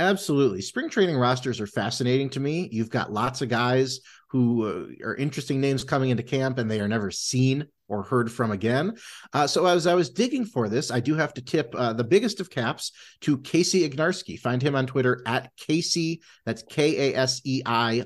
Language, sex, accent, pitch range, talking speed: English, male, American, 120-160 Hz, 190 wpm